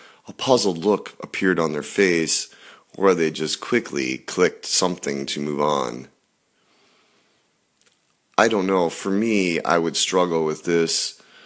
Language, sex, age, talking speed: English, male, 30-49, 135 wpm